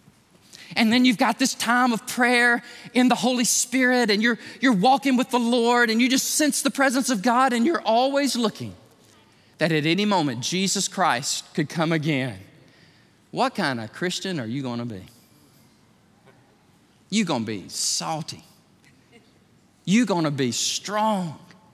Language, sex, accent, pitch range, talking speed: English, male, American, 150-230 Hz, 165 wpm